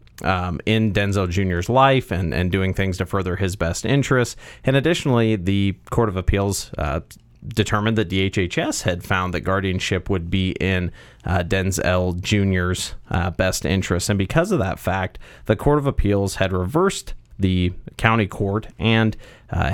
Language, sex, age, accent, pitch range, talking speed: English, male, 30-49, American, 95-110 Hz, 160 wpm